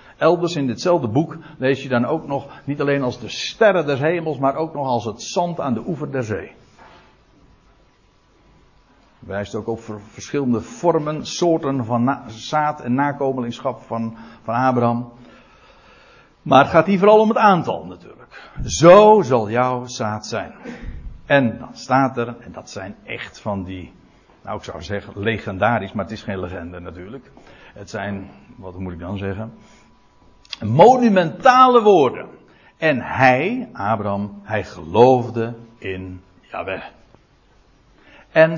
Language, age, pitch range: Dutch, 60-79, 105-155 Hz